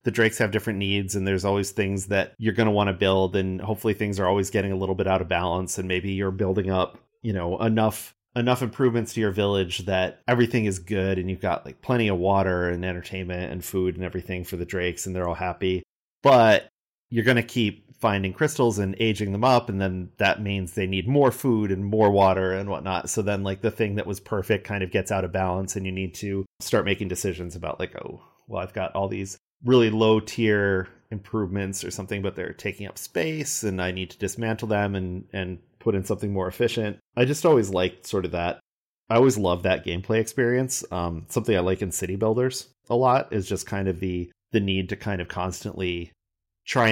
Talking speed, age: 225 wpm, 30-49